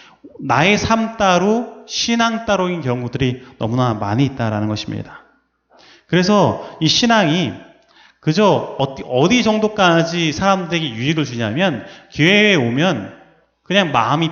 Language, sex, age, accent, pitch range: Korean, male, 30-49, native, 130-185 Hz